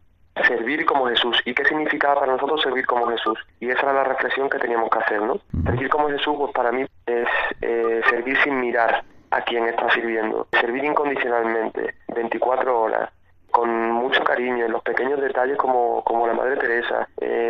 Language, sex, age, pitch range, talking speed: Spanish, male, 30-49, 115-130 Hz, 180 wpm